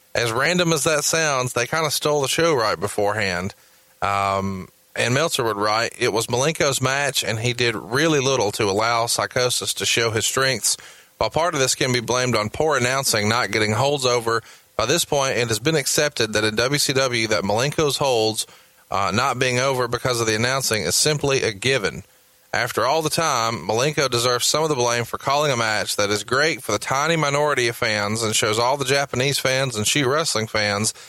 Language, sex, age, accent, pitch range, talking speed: English, male, 30-49, American, 115-145 Hz, 205 wpm